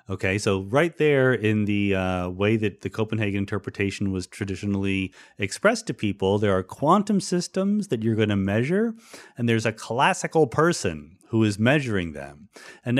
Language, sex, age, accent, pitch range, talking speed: English, male, 30-49, American, 100-150 Hz, 165 wpm